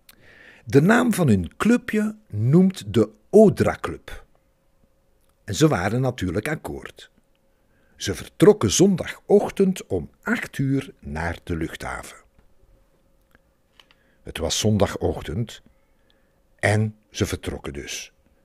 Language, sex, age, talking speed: Dutch, male, 60-79, 100 wpm